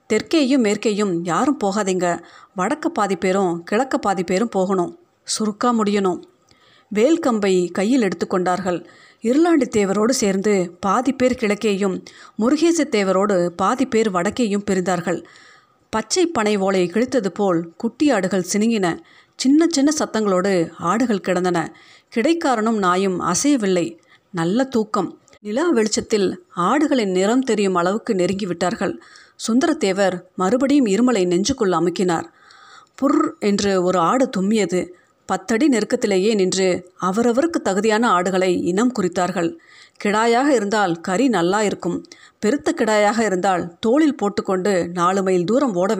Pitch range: 185-250 Hz